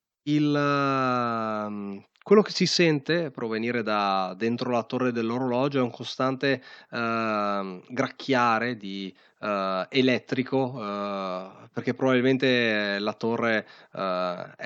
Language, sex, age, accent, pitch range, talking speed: Italian, male, 20-39, native, 105-135 Hz, 100 wpm